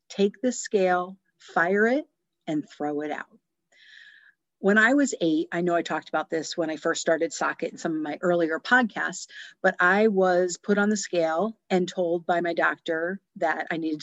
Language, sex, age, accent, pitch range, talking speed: English, female, 50-69, American, 165-210 Hz, 195 wpm